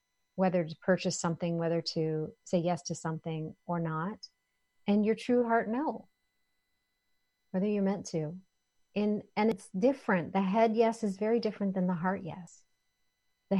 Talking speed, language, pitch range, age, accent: 155 wpm, English, 165-195 Hz, 40-59, American